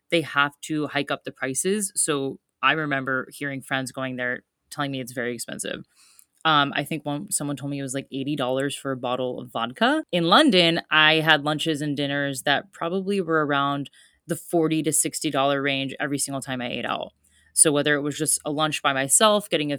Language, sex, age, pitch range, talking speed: English, female, 20-39, 135-165 Hz, 205 wpm